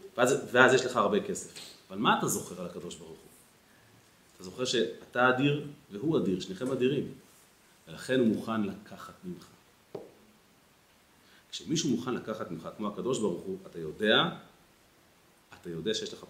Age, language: 40-59, Hebrew